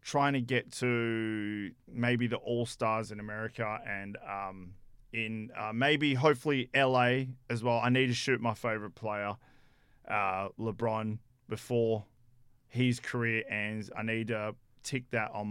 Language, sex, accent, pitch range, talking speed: English, male, Australian, 105-125 Hz, 145 wpm